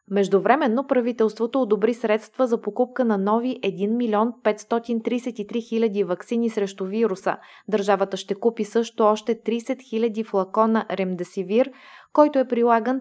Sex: female